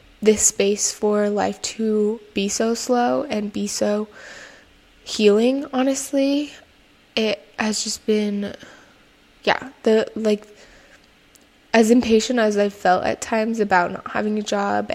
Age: 10-29